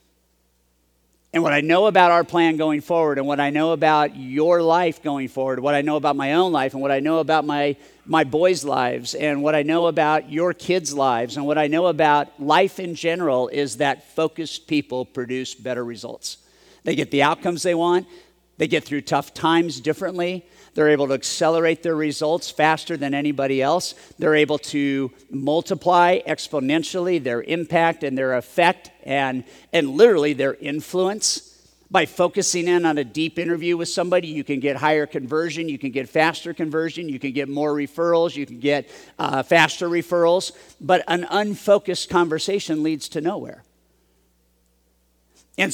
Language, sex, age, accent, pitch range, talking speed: English, male, 50-69, American, 145-175 Hz, 175 wpm